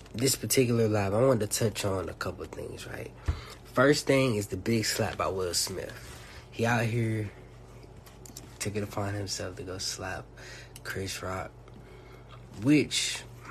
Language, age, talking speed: English, 20-39, 150 wpm